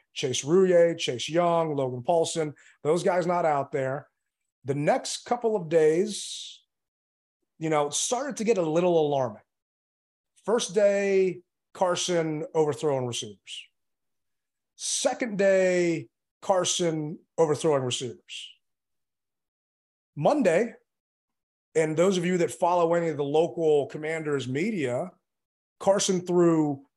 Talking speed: 110 wpm